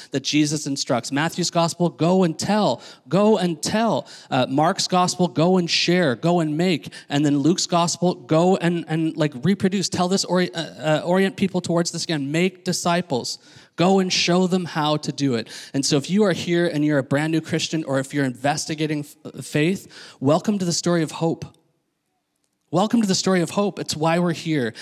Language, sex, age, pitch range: English, male, 30-49, 145-180 Hz